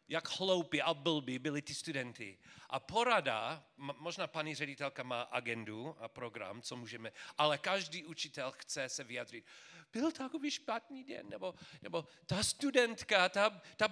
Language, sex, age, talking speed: Czech, male, 40-59, 150 wpm